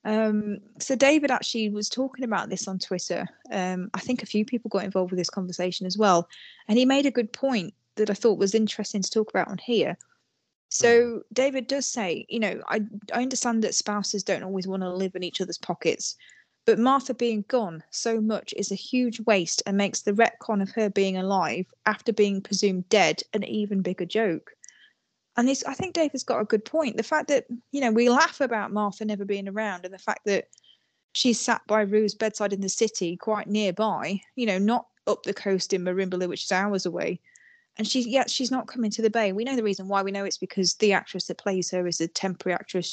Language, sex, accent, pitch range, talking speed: English, female, British, 190-235 Hz, 225 wpm